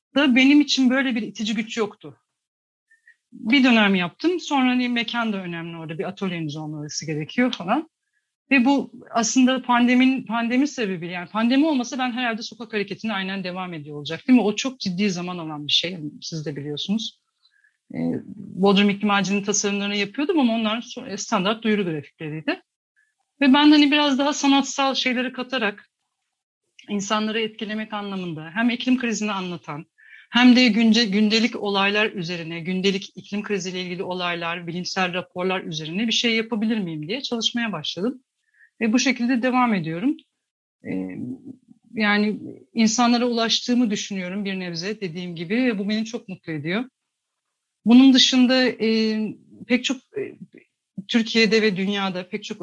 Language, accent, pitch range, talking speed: Turkish, native, 190-250 Hz, 140 wpm